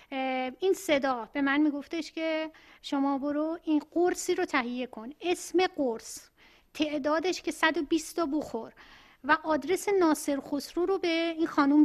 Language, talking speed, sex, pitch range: Persian, 135 wpm, female, 275-330 Hz